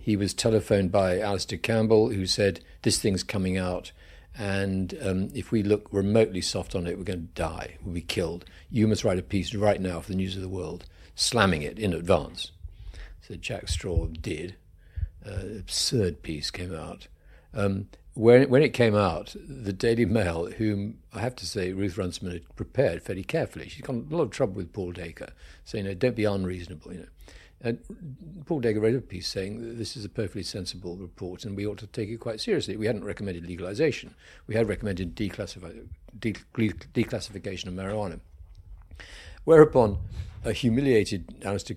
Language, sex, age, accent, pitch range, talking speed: English, male, 60-79, British, 90-115 Hz, 185 wpm